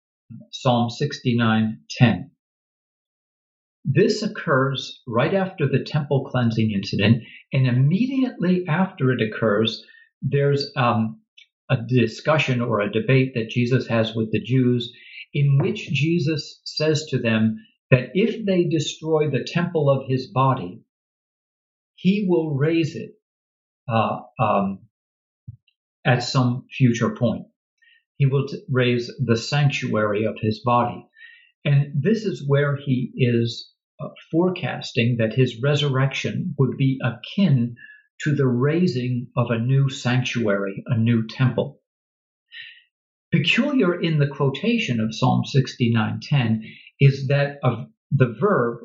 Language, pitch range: English, 115-155 Hz